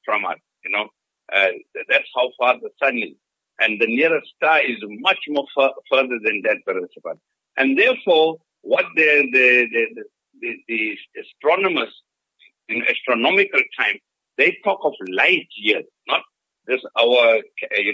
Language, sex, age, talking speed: English, male, 60-79, 145 wpm